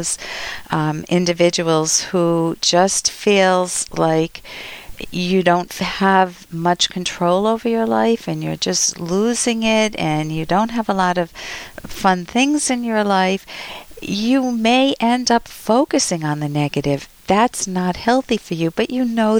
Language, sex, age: English, female, 50-69